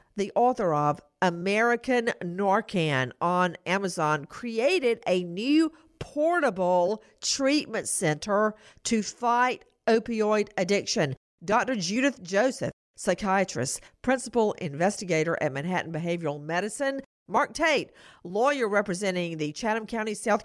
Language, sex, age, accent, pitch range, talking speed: English, female, 50-69, American, 175-235 Hz, 105 wpm